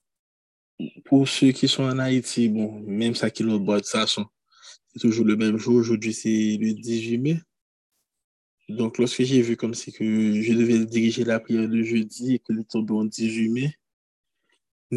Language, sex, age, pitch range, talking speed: French, male, 20-39, 105-115 Hz, 180 wpm